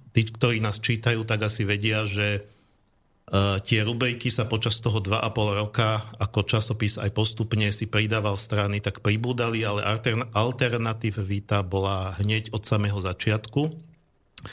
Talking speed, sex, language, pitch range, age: 135 wpm, male, Slovak, 105-115 Hz, 50-69